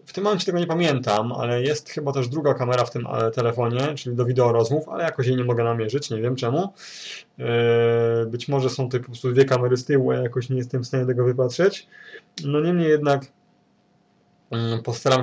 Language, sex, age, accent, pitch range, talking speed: Polish, male, 20-39, native, 120-145 Hz, 195 wpm